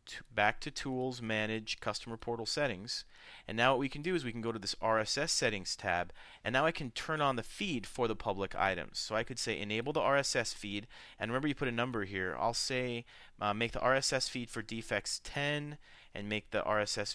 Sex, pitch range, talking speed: male, 105-135 Hz, 225 wpm